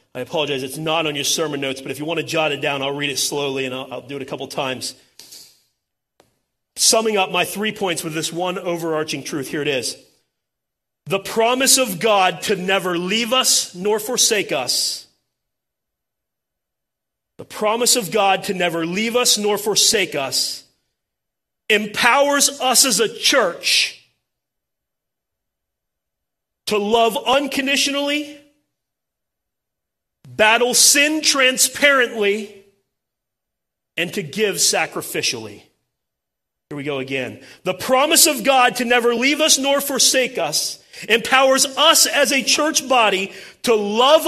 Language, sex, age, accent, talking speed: English, male, 40-59, American, 140 wpm